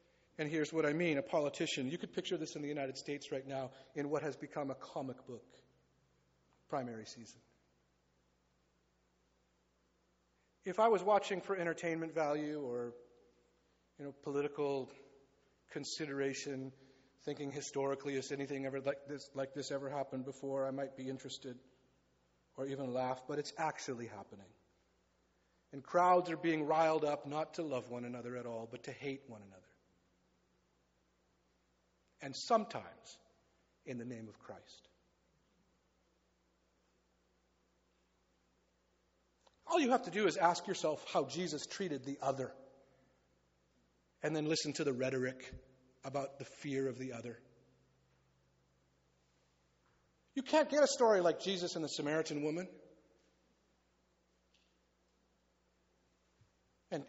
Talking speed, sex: 130 wpm, male